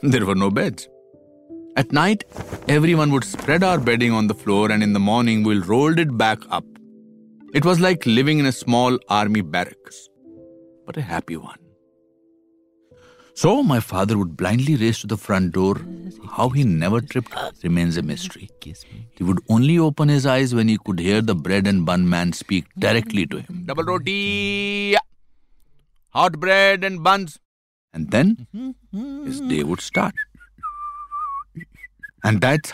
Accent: Indian